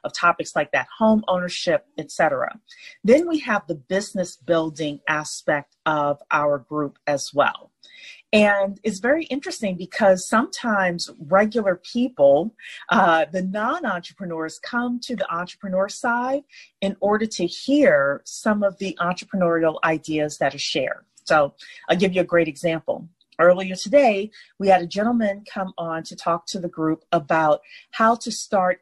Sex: female